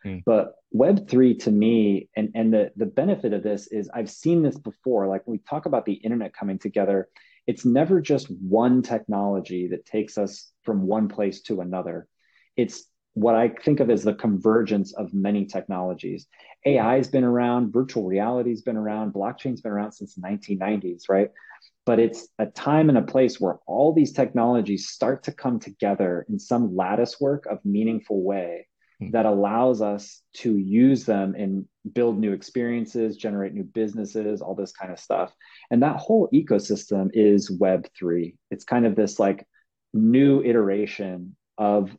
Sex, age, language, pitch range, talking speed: male, 30-49, English, 100-120 Hz, 175 wpm